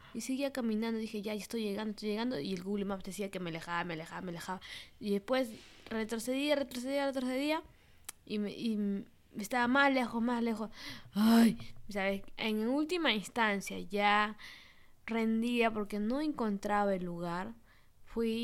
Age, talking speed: 20-39, 155 wpm